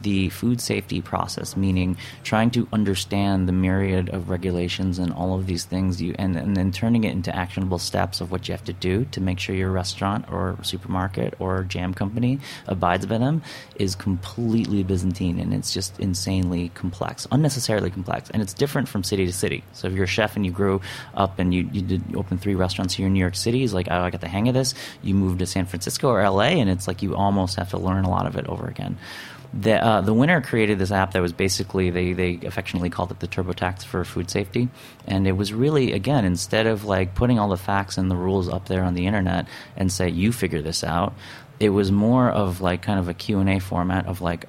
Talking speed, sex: 230 wpm, male